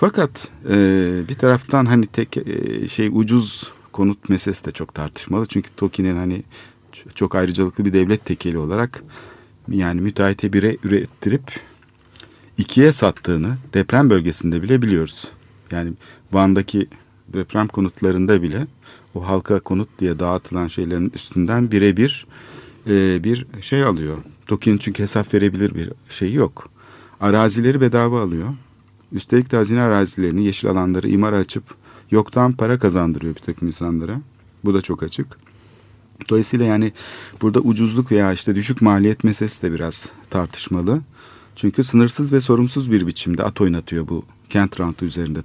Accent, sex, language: native, male, Turkish